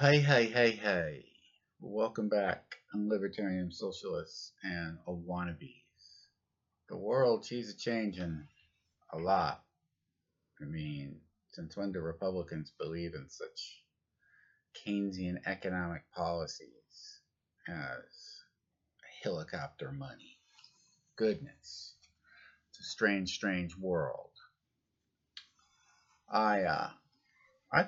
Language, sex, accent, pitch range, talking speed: English, male, American, 90-115 Hz, 85 wpm